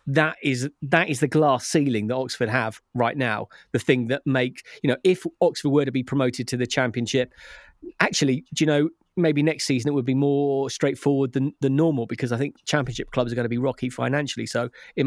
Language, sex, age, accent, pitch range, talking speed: English, male, 30-49, British, 125-150 Hz, 220 wpm